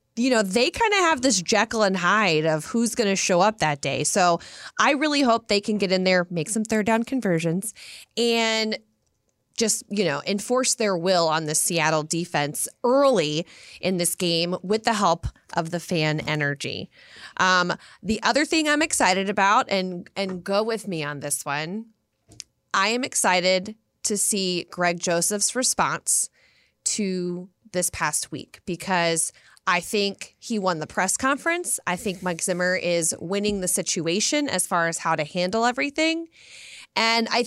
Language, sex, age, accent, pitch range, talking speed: English, female, 30-49, American, 170-225 Hz, 170 wpm